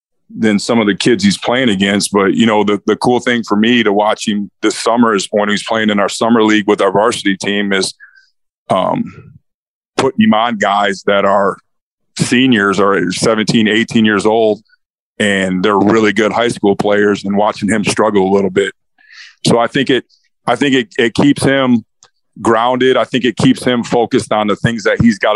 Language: English